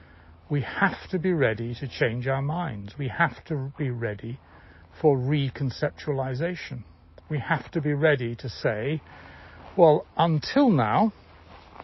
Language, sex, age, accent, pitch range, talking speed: English, male, 60-79, British, 105-155 Hz, 130 wpm